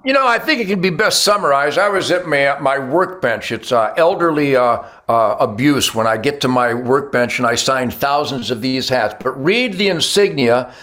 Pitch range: 125-165 Hz